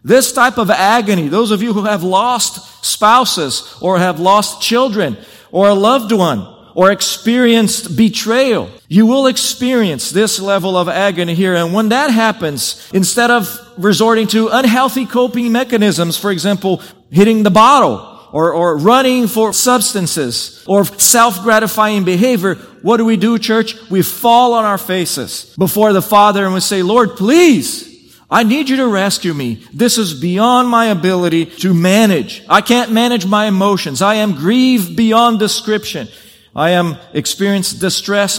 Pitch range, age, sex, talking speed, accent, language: 180-230 Hz, 40-59, male, 155 wpm, American, English